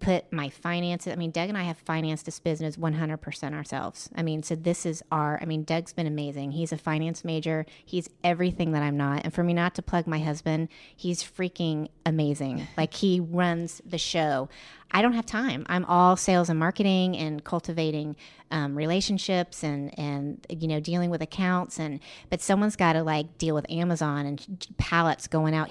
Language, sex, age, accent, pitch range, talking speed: English, female, 30-49, American, 155-185 Hz, 195 wpm